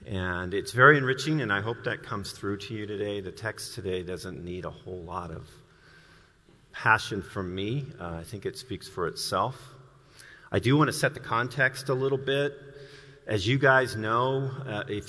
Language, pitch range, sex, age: English, 95-125 Hz, male, 40-59